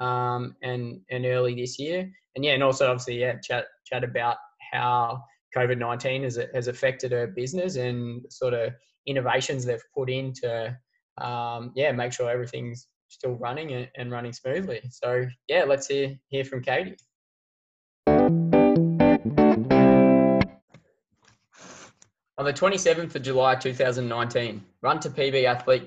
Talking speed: 135 wpm